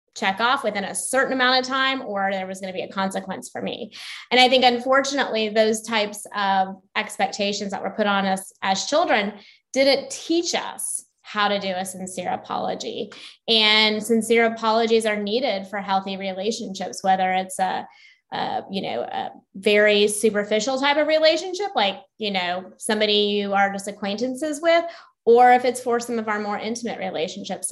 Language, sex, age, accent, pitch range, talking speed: English, female, 20-39, American, 195-225 Hz, 175 wpm